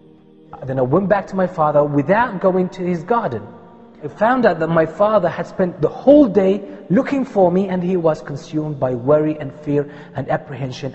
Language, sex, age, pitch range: English, male, 30-49, 150-210 Hz